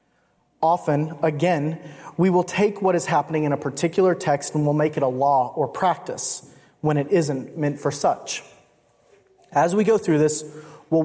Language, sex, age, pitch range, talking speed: English, male, 30-49, 150-200 Hz, 175 wpm